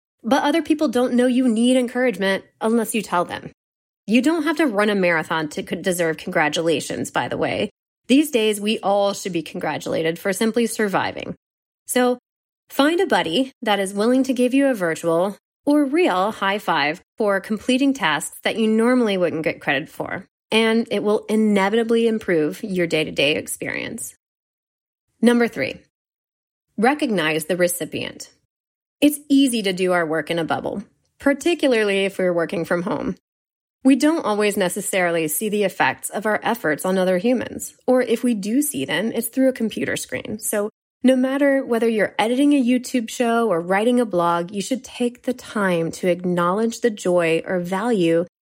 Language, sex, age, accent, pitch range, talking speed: English, female, 30-49, American, 180-250 Hz, 170 wpm